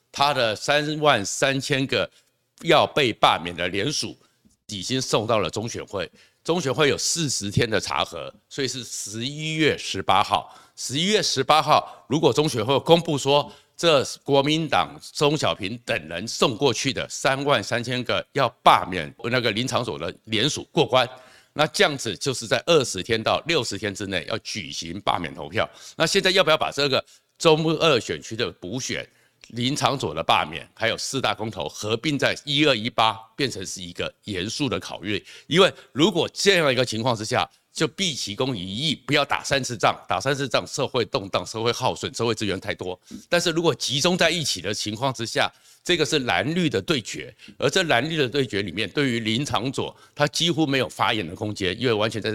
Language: Chinese